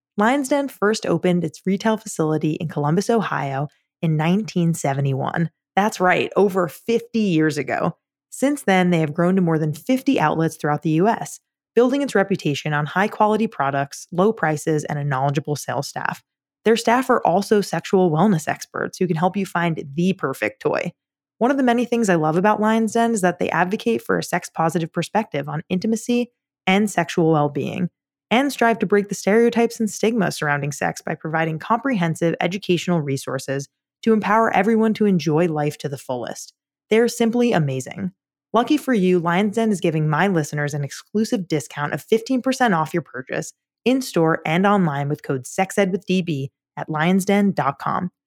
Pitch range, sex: 155-220 Hz, female